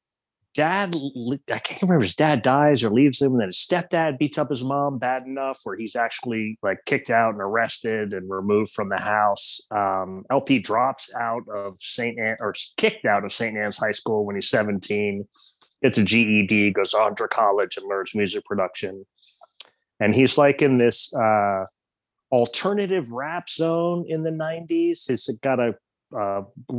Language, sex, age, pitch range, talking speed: English, male, 30-49, 115-170 Hz, 170 wpm